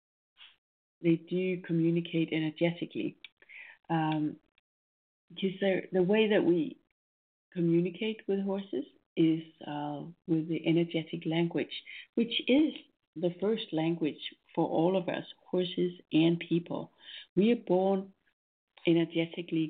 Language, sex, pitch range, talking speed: English, female, 160-220 Hz, 105 wpm